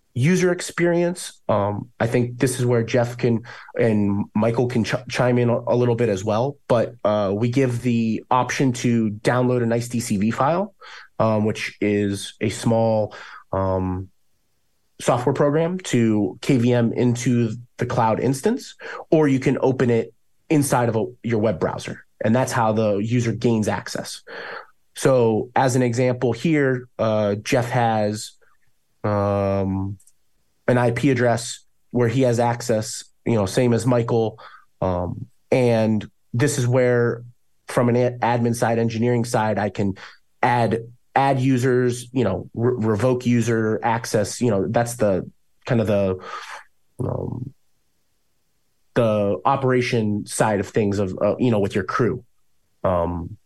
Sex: male